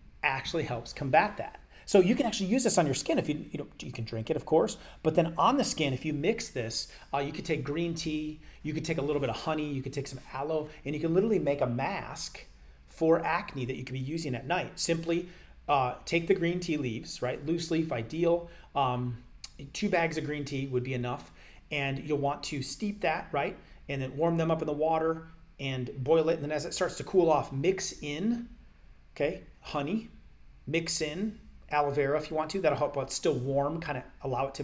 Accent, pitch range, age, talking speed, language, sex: American, 135-160 Hz, 30-49, 230 wpm, English, male